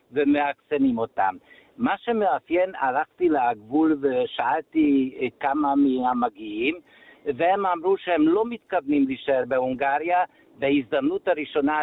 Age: 60-79